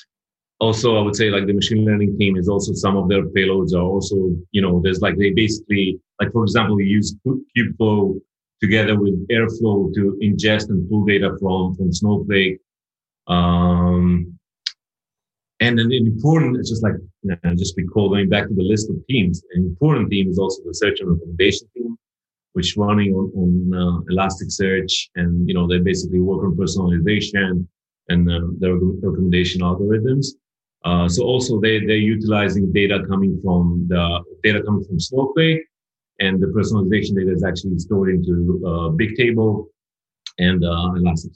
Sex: male